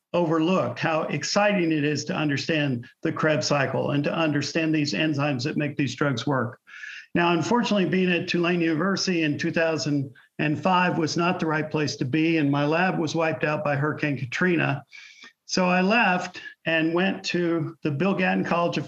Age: 50-69